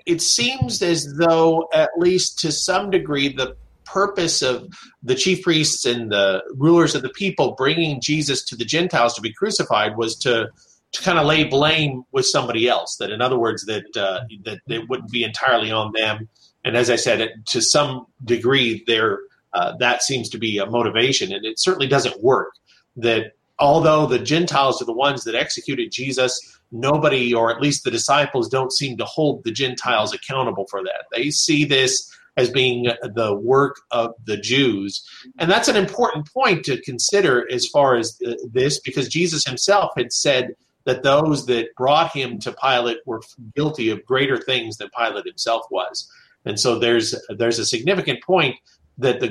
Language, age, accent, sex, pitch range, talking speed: English, 40-59, American, male, 120-165 Hz, 180 wpm